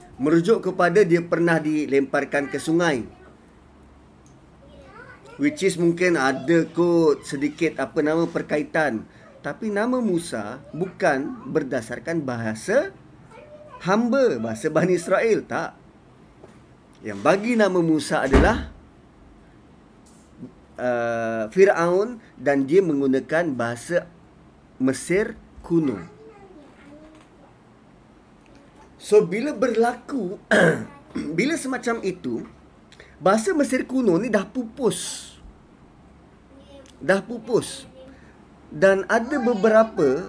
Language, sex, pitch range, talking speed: Malay, male, 155-195 Hz, 85 wpm